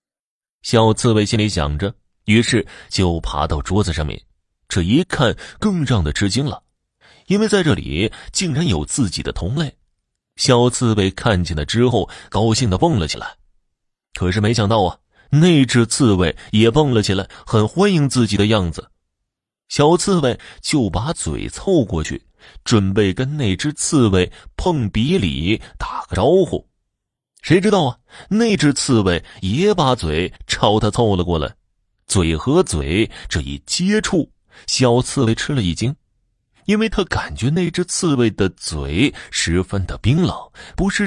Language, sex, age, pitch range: Chinese, male, 30-49, 90-135 Hz